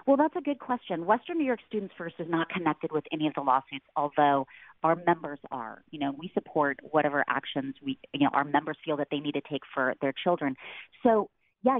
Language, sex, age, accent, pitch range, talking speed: English, female, 30-49, American, 150-215 Hz, 225 wpm